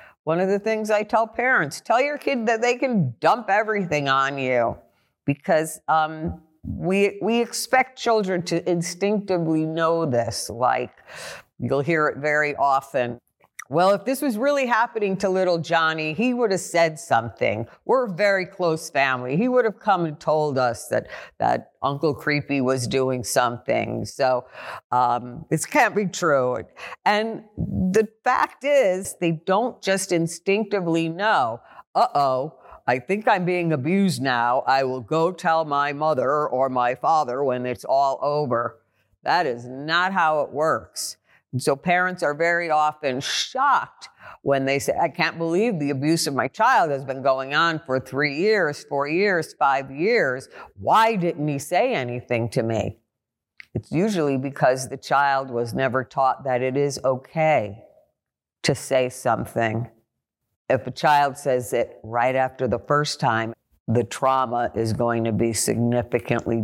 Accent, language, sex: American, English, female